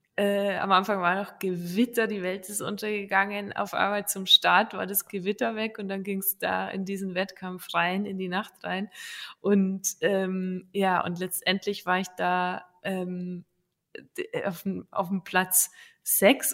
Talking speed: 165 wpm